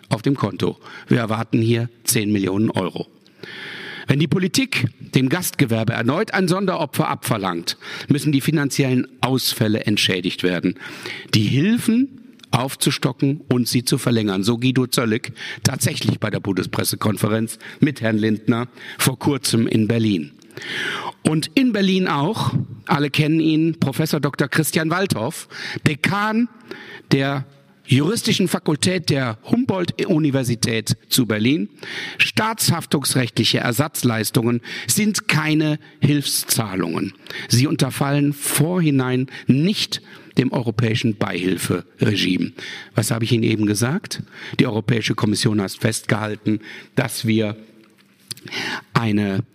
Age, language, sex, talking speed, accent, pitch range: 50-69, German, male, 110 wpm, German, 110-150 Hz